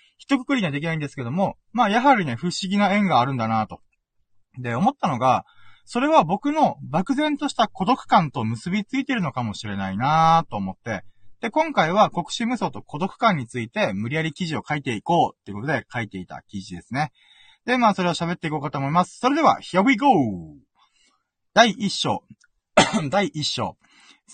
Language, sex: Japanese, male